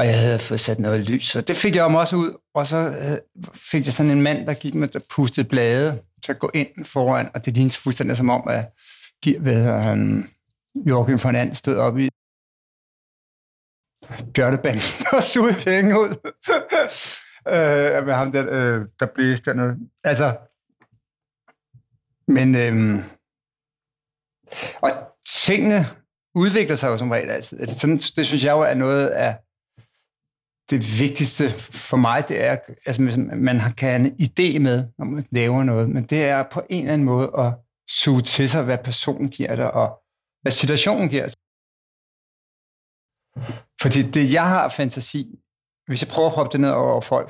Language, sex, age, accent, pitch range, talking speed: Danish, male, 60-79, native, 120-150 Hz, 175 wpm